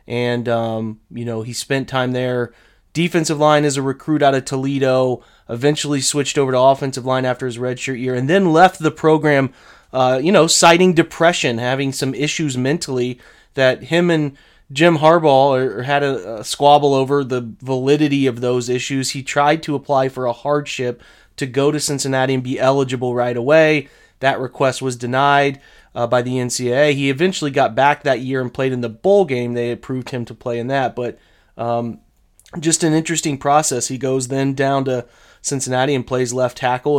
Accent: American